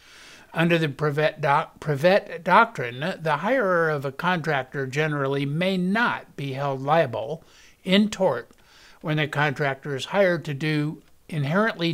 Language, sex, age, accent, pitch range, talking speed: English, male, 60-79, American, 145-185 Hz, 130 wpm